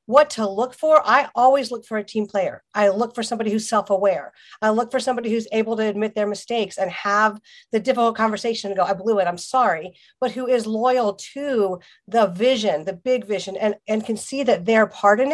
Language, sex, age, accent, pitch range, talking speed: English, female, 50-69, American, 200-240 Hz, 225 wpm